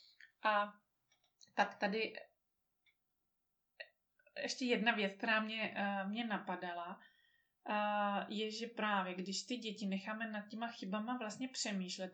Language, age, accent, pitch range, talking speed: Czech, 30-49, native, 195-220 Hz, 110 wpm